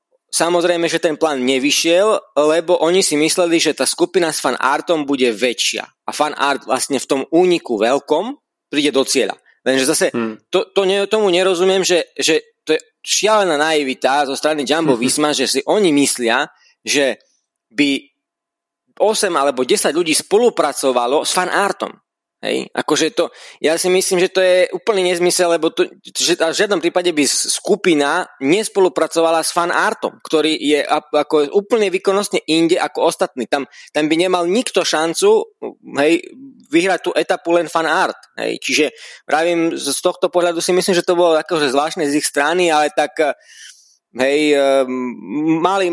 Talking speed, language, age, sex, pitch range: 160 wpm, Slovak, 20-39, male, 135-190 Hz